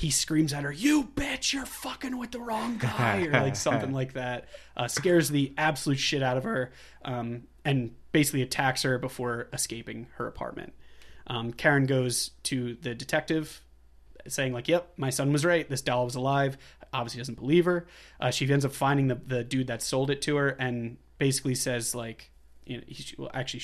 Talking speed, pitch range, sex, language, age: 185 wpm, 120-145 Hz, male, English, 20-39